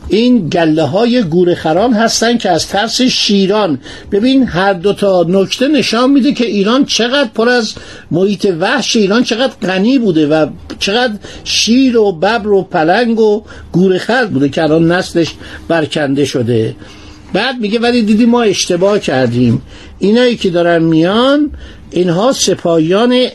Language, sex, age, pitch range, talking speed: Persian, male, 60-79, 155-220 Hz, 140 wpm